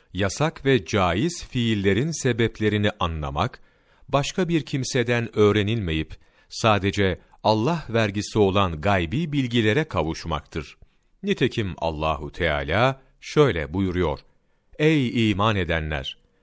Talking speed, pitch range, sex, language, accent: 90 wpm, 90-120 Hz, male, Turkish, native